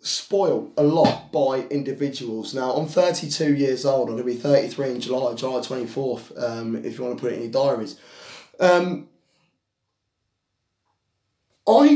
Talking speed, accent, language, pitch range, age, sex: 155 wpm, British, English, 125-180 Hz, 20-39, male